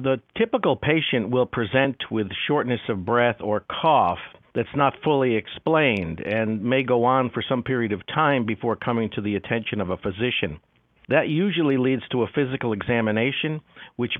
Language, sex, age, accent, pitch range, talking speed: English, male, 50-69, American, 110-130 Hz, 170 wpm